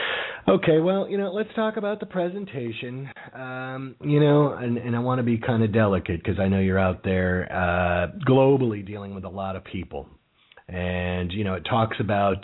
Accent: American